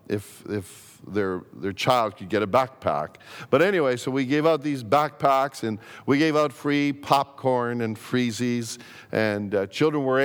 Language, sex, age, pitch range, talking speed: English, male, 50-69, 110-140 Hz, 170 wpm